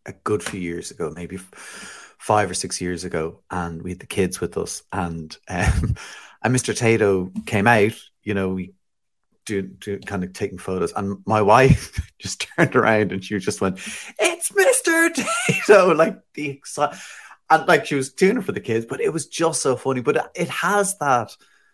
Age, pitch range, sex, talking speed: 30-49, 95-135 Hz, male, 190 wpm